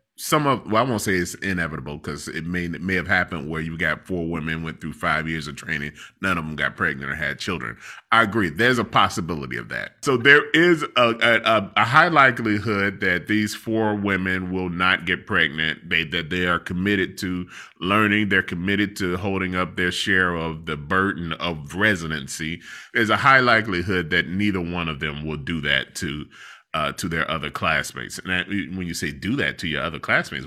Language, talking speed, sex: English, 205 wpm, male